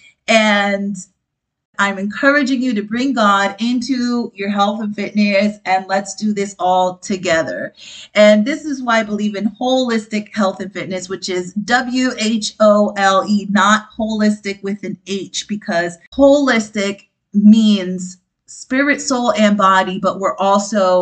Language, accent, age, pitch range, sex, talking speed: English, American, 30-49, 180-220 Hz, female, 135 wpm